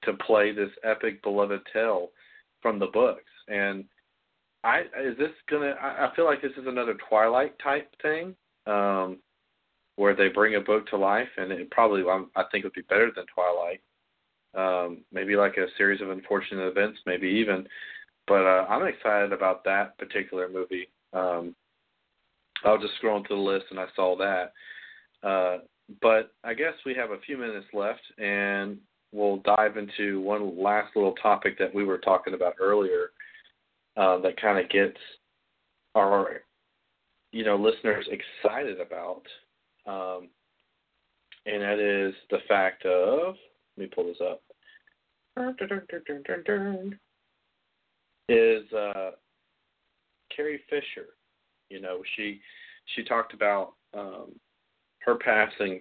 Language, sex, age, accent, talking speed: English, male, 40-59, American, 140 wpm